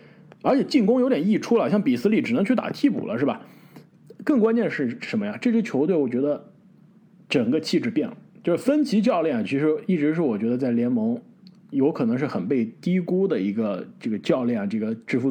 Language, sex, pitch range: Chinese, male, 170-235 Hz